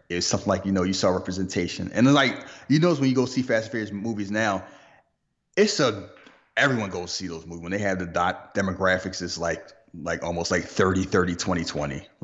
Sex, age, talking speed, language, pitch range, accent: male, 30-49, 205 wpm, English, 85-110 Hz, American